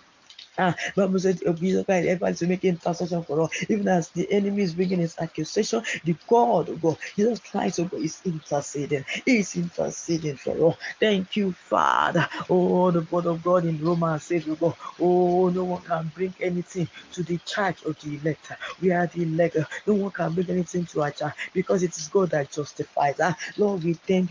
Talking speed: 200 wpm